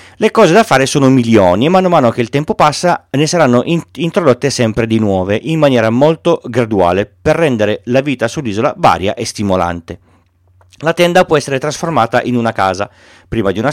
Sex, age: male, 40-59